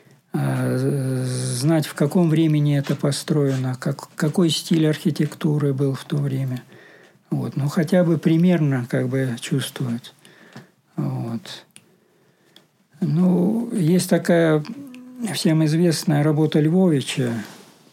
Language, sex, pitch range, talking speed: Russian, male, 140-170 Hz, 100 wpm